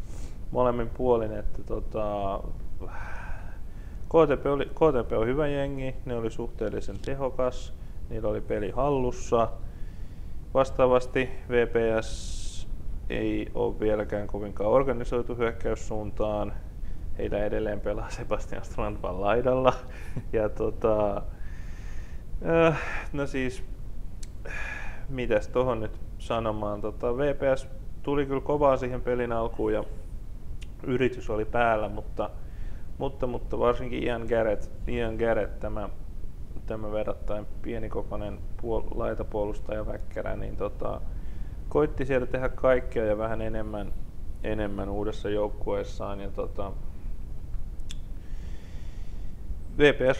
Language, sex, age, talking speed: Finnish, male, 20-39, 100 wpm